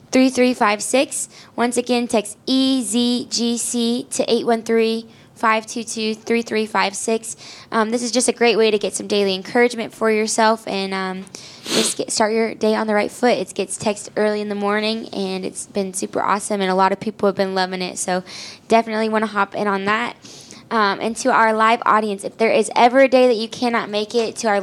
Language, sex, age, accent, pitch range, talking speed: English, female, 10-29, American, 205-230 Hz, 195 wpm